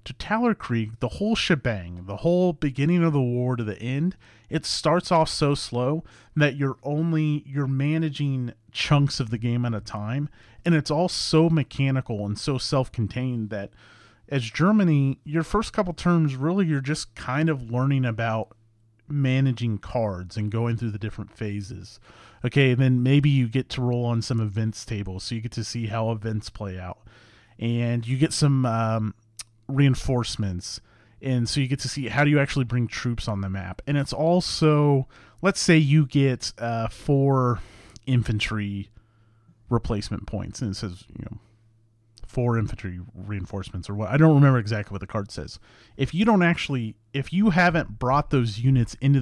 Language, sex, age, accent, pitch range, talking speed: English, male, 30-49, American, 110-145 Hz, 175 wpm